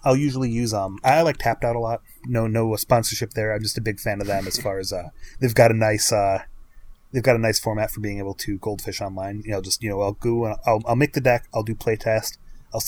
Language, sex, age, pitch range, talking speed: English, male, 30-49, 100-120 Hz, 270 wpm